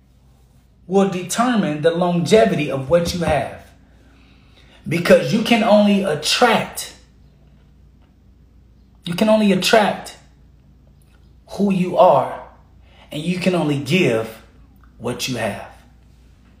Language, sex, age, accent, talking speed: English, male, 30-49, American, 100 wpm